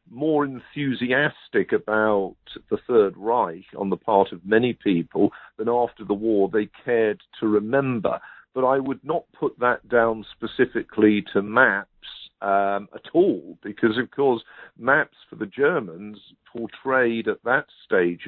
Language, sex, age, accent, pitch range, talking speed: English, male, 50-69, British, 100-130 Hz, 145 wpm